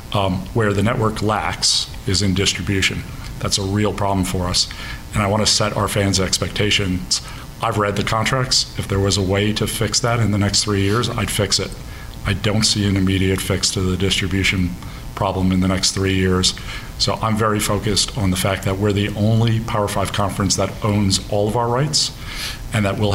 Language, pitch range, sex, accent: English, 95-110 Hz, male, American